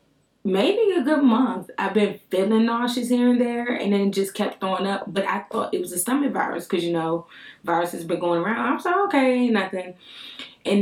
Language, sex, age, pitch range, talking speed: English, female, 20-39, 175-210 Hz, 210 wpm